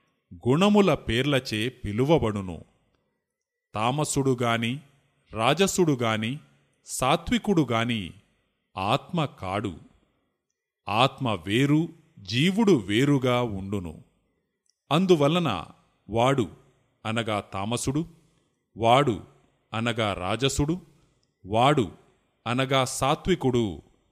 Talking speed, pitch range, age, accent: 55 wpm, 110-155 Hz, 30-49, native